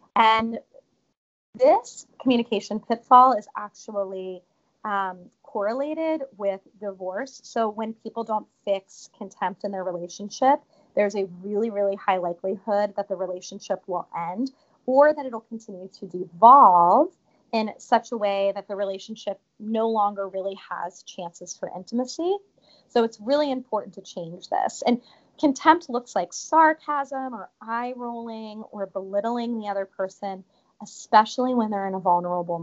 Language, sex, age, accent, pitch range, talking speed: English, female, 30-49, American, 190-245 Hz, 135 wpm